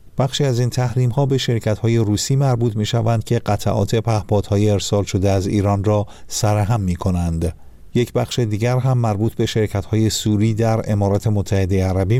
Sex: male